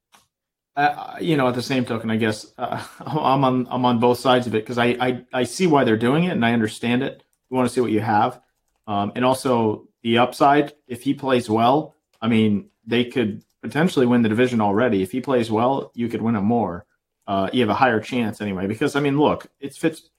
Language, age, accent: English, 40-59, American